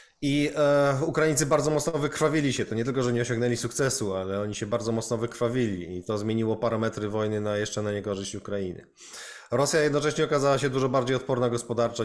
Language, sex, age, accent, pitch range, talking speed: Polish, male, 20-39, native, 105-130 Hz, 185 wpm